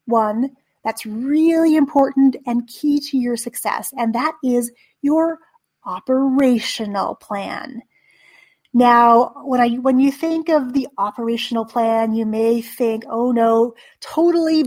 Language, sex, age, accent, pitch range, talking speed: English, female, 30-49, American, 230-290 Hz, 125 wpm